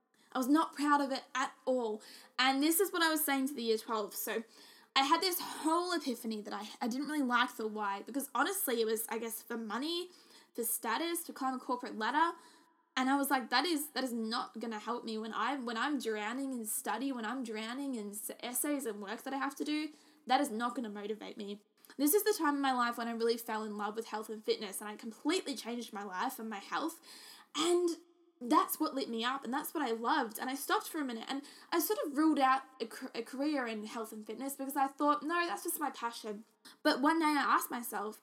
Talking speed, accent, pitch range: 245 wpm, Australian, 230-295 Hz